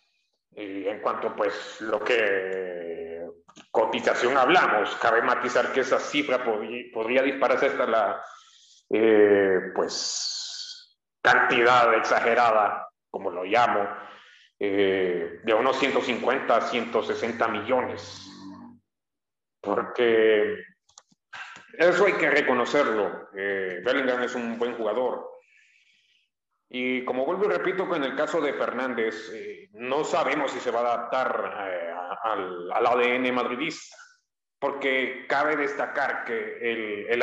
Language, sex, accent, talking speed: English, male, Mexican, 115 wpm